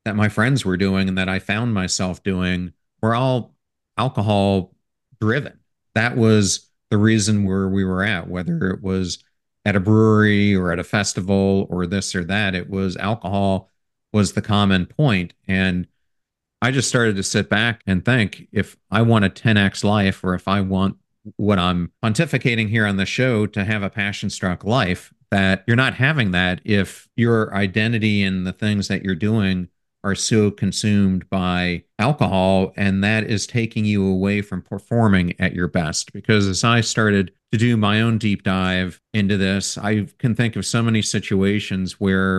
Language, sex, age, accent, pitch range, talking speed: English, male, 40-59, American, 95-110 Hz, 180 wpm